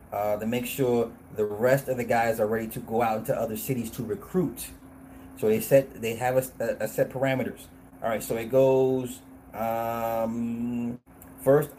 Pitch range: 105-135 Hz